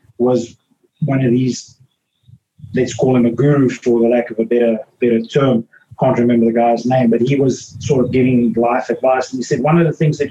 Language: English